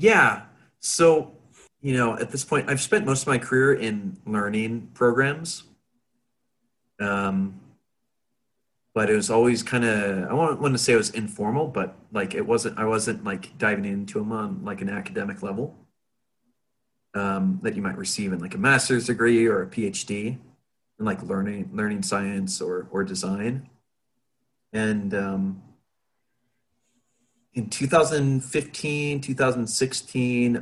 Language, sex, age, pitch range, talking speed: English, male, 30-49, 100-130 Hz, 140 wpm